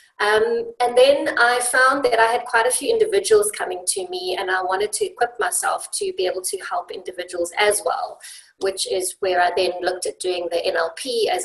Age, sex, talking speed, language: 30-49, female, 210 wpm, English